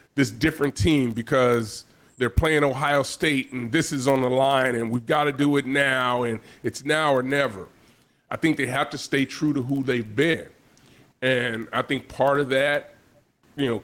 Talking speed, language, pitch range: 195 wpm, English, 130-155 Hz